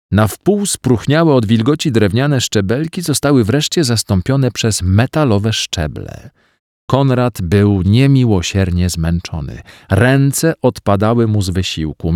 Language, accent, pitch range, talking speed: Polish, native, 100-140 Hz, 110 wpm